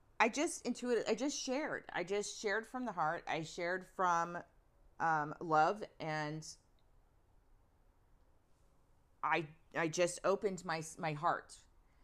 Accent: American